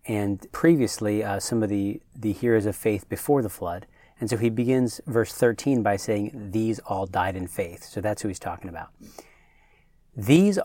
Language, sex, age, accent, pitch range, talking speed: English, male, 40-59, American, 105-130 Hz, 185 wpm